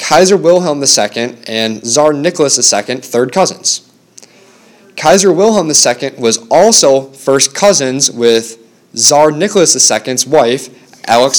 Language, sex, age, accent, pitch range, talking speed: English, male, 20-39, American, 120-160 Hz, 115 wpm